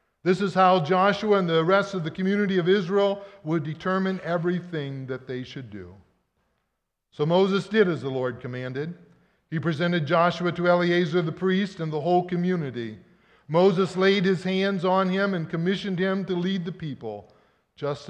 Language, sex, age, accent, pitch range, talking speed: English, male, 50-69, American, 140-190 Hz, 170 wpm